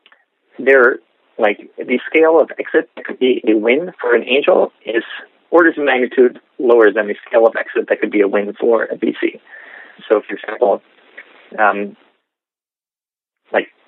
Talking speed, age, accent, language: 165 wpm, 30-49, American, English